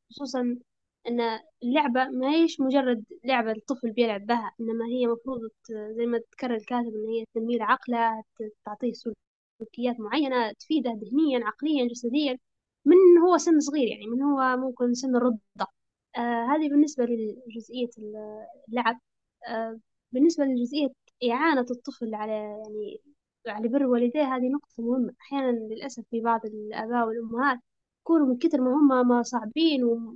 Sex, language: female, Arabic